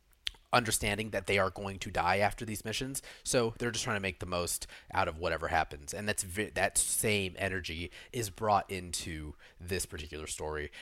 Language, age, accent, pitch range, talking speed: English, 30-49, American, 90-120 Hz, 185 wpm